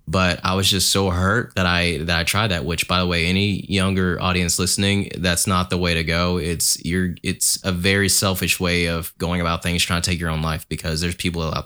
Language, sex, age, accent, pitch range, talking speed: English, male, 20-39, American, 80-95 Hz, 240 wpm